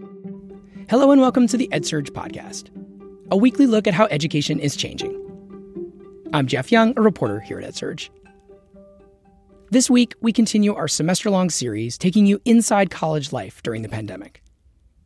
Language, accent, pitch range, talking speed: English, American, 125-195 Hz, 150 wpm